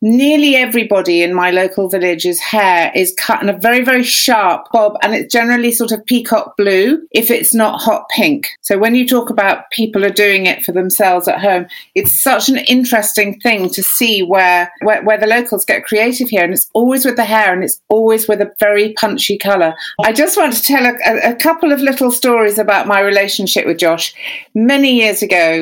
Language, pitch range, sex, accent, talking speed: English, 190-240 Hz, female, British, 205 wpm